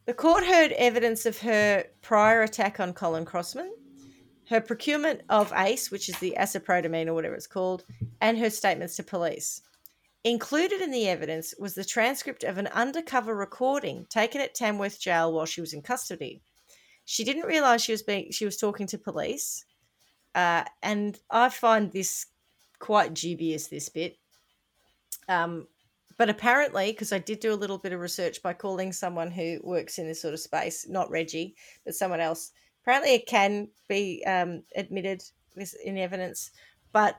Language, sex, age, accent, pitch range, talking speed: English, female, 30-49, Australian, 175-225 Hz, 165 wpm